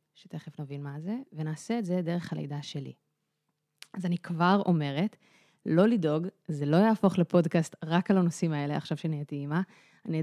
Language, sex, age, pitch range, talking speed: Hebrew, female, 30-49, 155-190 Hz, 165 wpm